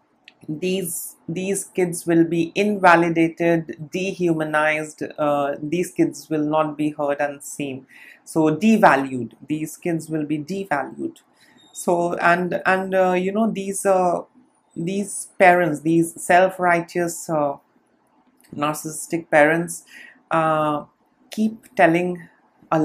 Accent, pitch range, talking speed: Indian, 150-180 Hz, 110 wpm